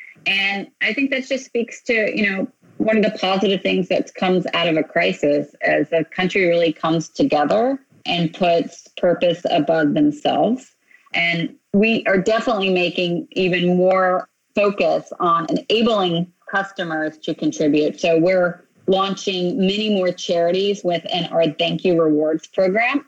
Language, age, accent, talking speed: English, 30-49, American, 145 wpm